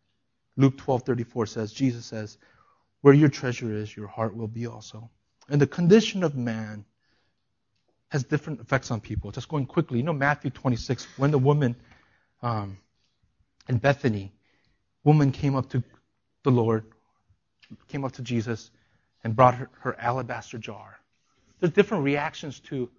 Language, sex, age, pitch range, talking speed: English, male, 30-49, 120-170 Hz, 150 wpm